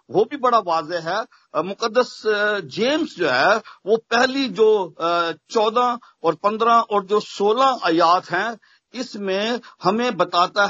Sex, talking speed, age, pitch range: male, 130 wpm, 50-69, 180-255 Hz